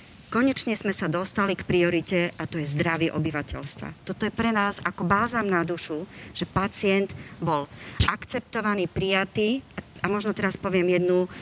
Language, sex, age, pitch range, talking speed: Slovak, male, 40-59, 170-210 Hz, 150 wpm